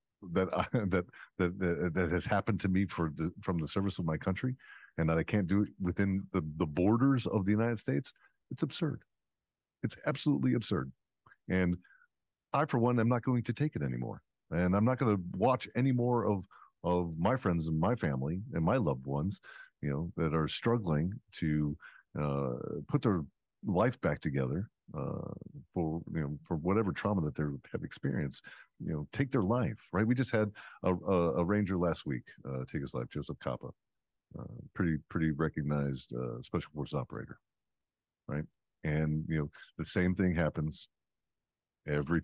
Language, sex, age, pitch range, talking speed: English, male, 50-69, 80-100 Hz, 180 wpm